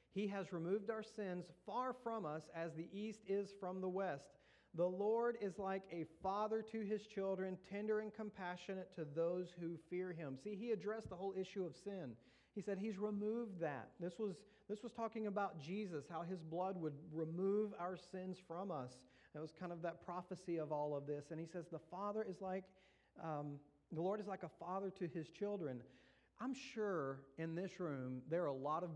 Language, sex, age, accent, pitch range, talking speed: English, male, 40-59, American, 140-195 Hz, 205 wpm